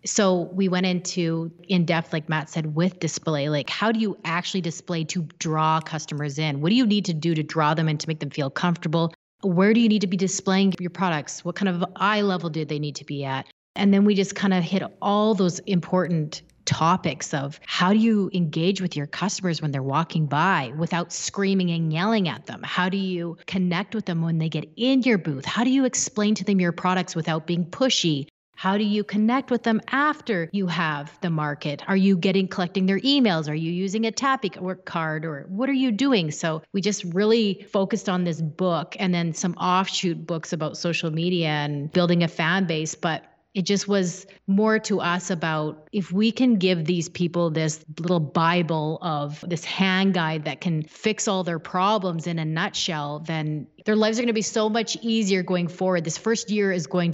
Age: 30-49